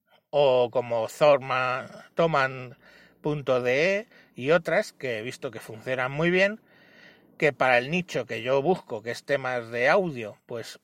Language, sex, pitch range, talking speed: Spanish, male, 125-170 Hz, 140 wpm